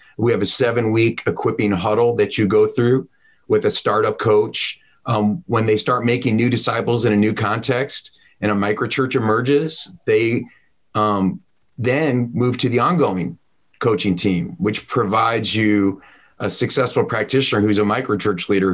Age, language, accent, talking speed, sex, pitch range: 40-59, English, American, 155 wpm, male, 100-125 Hz